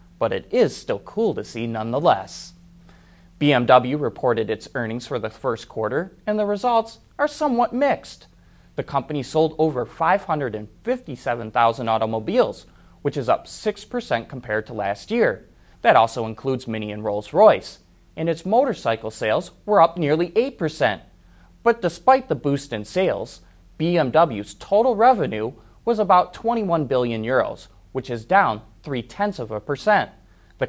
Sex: male